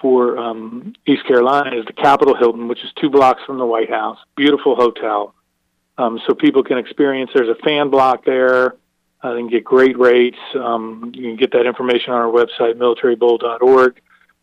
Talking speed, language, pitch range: 180 wpm, English, 125-145 Hz